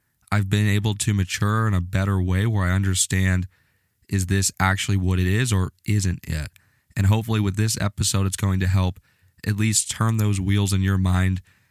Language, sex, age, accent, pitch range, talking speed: English, male, 20-39, American, 95-105 Hz, 195 wpm